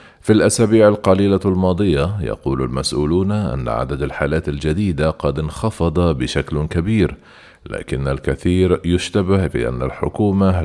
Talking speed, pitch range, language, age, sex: 115 wpm, 80-95 Hz, Arabic, 40-59, male